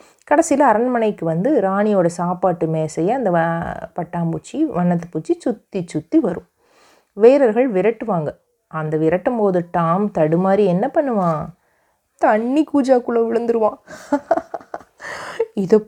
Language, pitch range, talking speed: Tamil, 170-230 Hz, 100 wpm